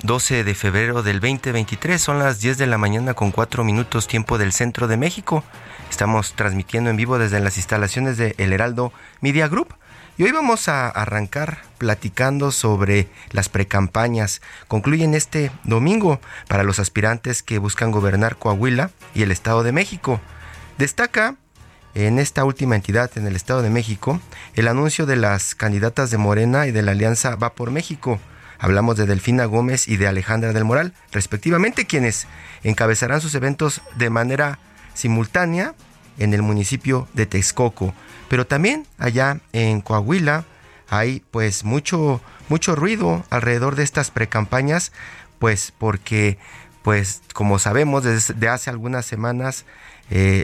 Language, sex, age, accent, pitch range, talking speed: Spanish, male, 30-49, Mexican, 105-135 Hz, 150 wpm